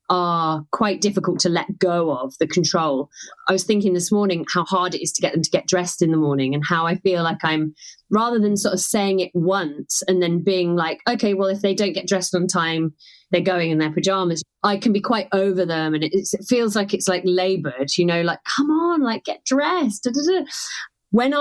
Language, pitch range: English, 165-200 Hz